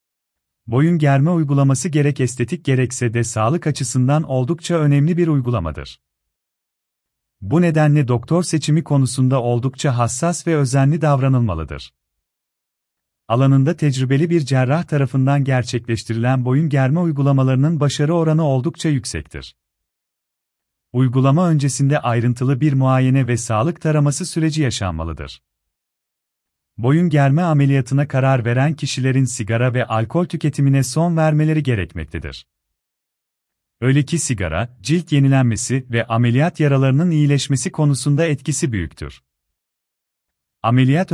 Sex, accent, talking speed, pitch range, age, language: male, native, 105 wpm, 110-150 Hz, 40-59, Turkish